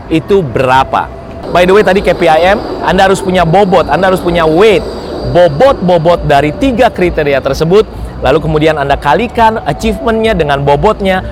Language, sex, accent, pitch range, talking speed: Indonesian, male, native, 135-210 Hz, 145 wpm